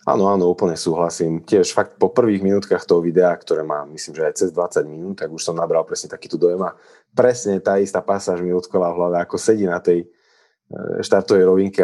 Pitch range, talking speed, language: 90-120 Hz, 210 wpm, Slovak